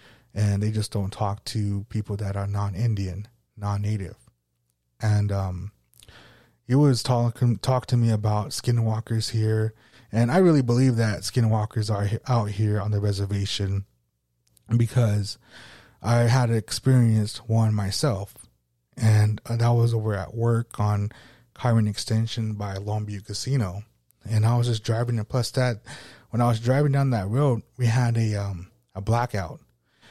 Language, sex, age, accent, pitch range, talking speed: English, male, 30-49, American, 105-120 Hz, 150 wpm